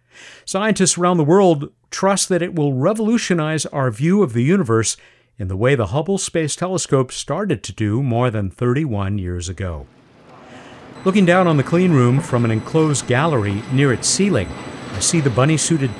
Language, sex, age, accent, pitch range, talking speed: English, male, 50-69, American, 115-165 Hz, 175 wpm